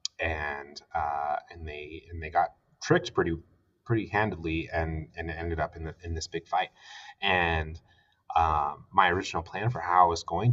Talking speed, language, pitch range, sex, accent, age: 180 wpm, English, 80-115 Hz, male, American, 30-49